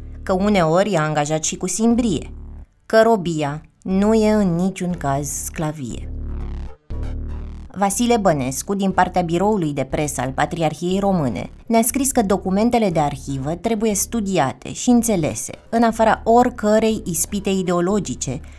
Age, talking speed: 20-39, 130 wpm